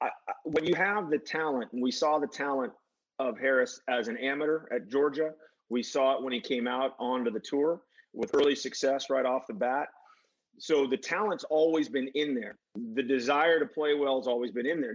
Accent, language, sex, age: American, English, male, 30-49